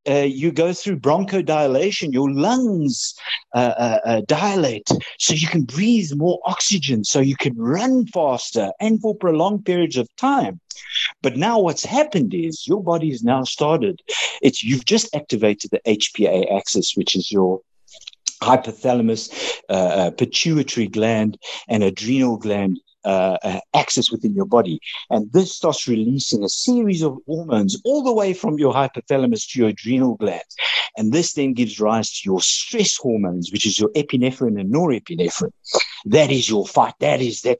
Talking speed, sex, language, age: 160 wpm, male, English, 60-79